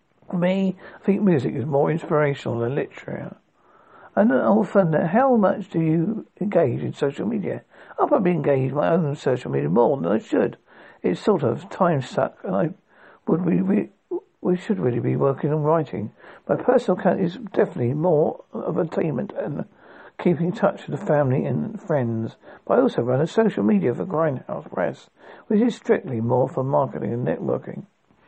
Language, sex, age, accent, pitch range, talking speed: English, male, 60-79, British, 135-200 Hz, 180 wpm